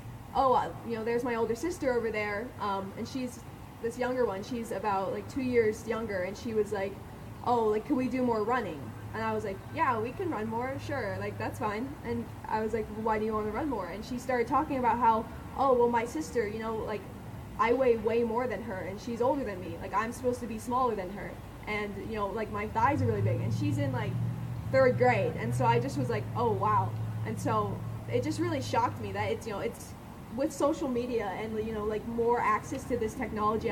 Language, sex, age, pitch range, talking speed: English, female, 10-29, 210-245 Hz, 240 wpm